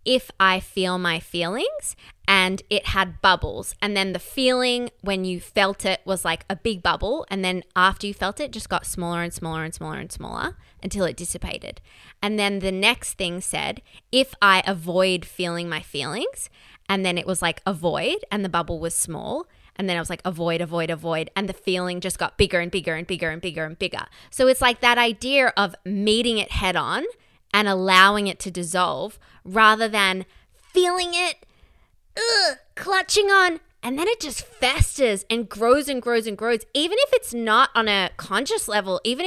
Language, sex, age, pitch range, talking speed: English, female, 20-39, 180-240 Hz, 195 wpm